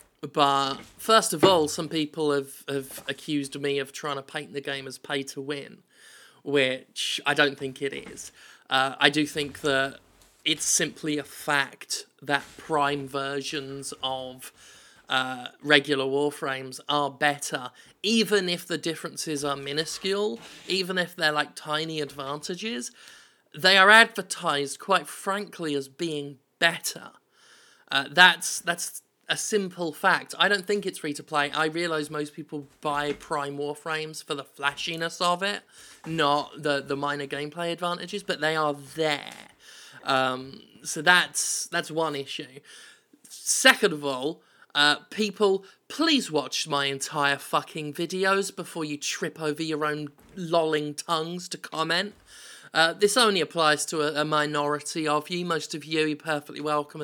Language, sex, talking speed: English, male, 150 wpm